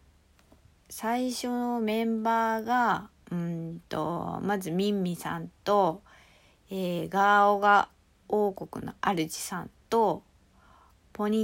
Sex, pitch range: female, 165-230 Hz